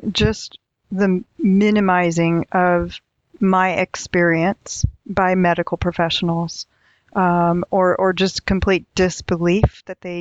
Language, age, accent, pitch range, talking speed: English, 40-59, American, 175-195 Hz, 100 wpm